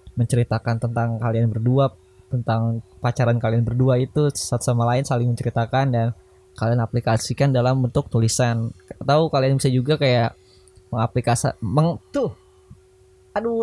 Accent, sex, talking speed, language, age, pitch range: native, male, 130 wpm, Indonesian, 10-29, 115-140 Hz